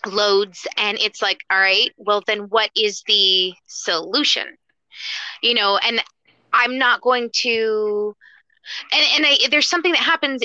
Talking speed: 150 wpm